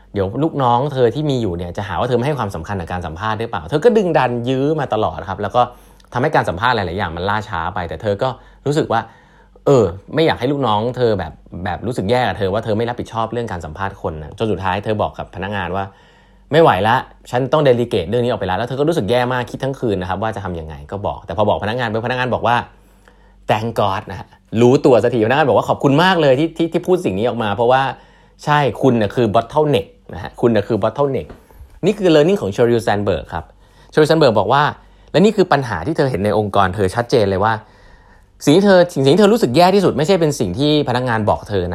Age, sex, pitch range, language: 20-39, male, 95-135 Hz, Thai